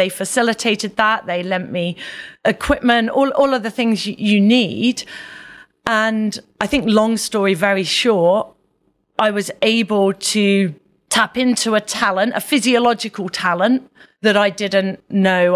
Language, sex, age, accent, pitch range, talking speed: English, female, 30-49, British, 190-225 Hz, 140 wpm